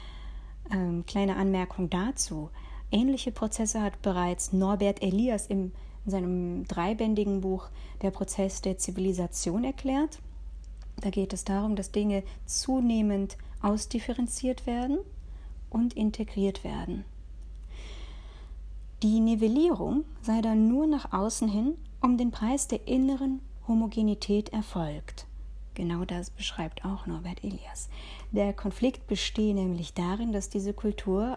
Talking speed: 115 wpm